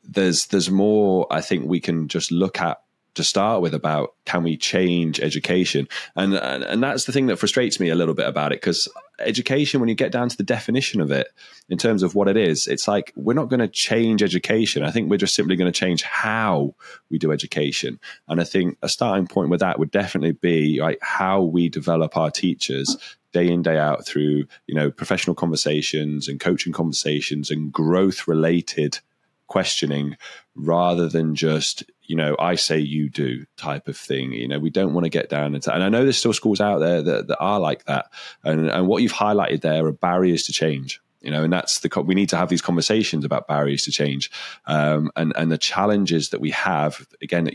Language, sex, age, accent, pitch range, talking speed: English, male, 20-39, British, 75-90 Hz, 215 wpm